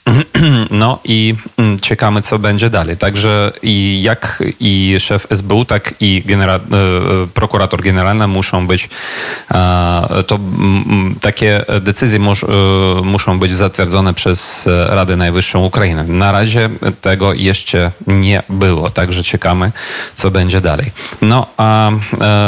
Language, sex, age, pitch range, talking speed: Polish, male, 30-49, 95-105 Hz, 130 wpm